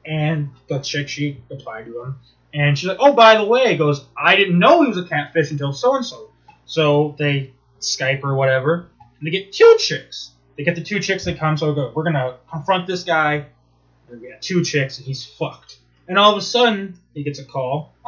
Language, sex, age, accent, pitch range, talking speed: English, male, 20-39, American, 135-190 Hz, 225 wpm